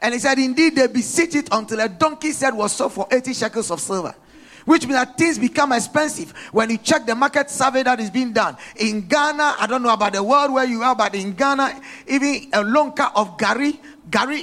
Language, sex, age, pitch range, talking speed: English, male, 50-69, 215-280 Hz, 230 wpm